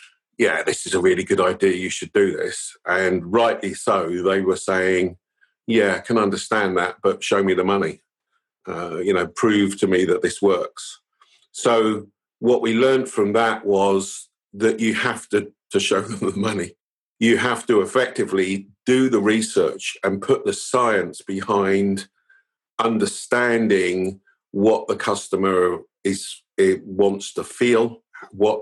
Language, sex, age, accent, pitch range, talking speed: English, male, 50-69, British, 95-115 Hz, 155 wpm